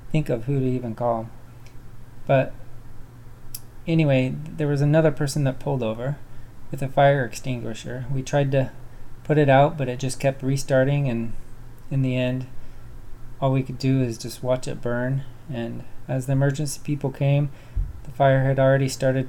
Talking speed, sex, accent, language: 170 wpm, male, American, English